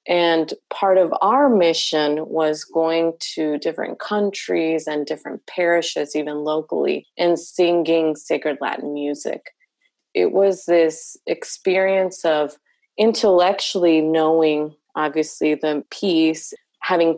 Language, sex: English, female